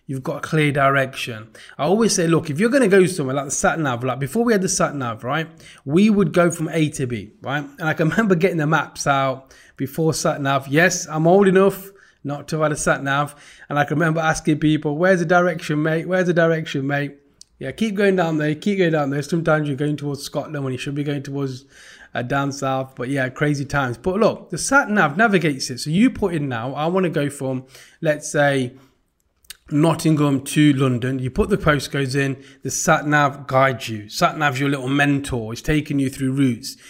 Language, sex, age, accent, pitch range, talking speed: English, male, 20-39, British, 135-170 Hz, 215 wpm